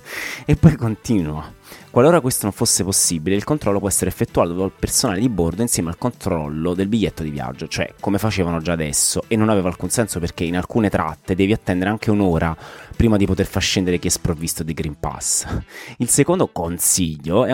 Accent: native